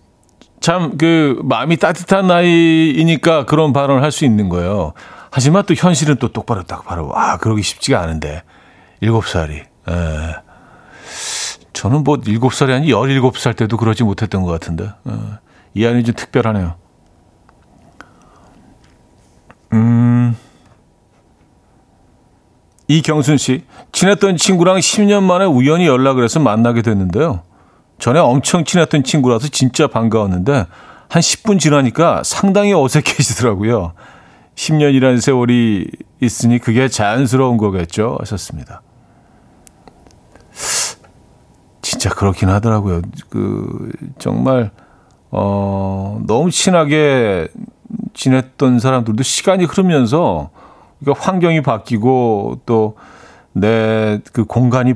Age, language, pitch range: 50-69, Korean, 105-150 Hz